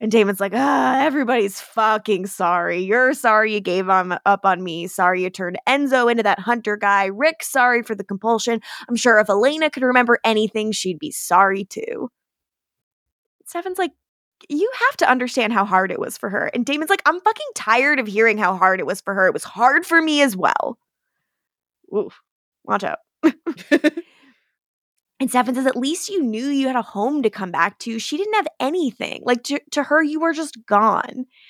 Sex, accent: female, American